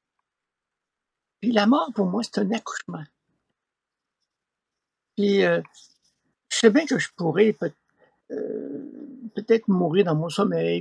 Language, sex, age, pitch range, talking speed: French, male, 60-79, 175-255 Hz, 130 wpm